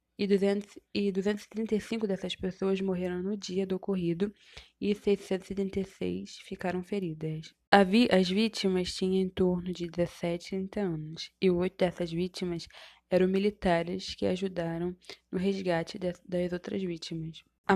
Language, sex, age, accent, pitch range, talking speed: Portuguese, female, 20-39, Brazilian, 170-195 Hz, 140 wpm